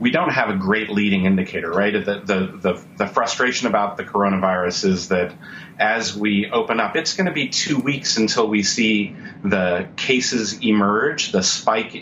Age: 40-59